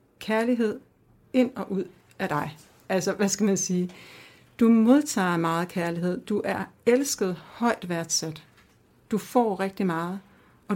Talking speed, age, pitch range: 140 wpm, 60-79, 175-215 Hz